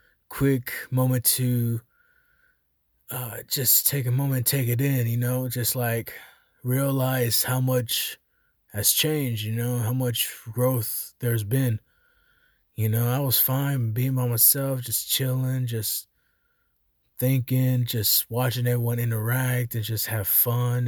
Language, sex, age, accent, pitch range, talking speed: English, male, 20-39, American, 110-130 Hz, 135 wpm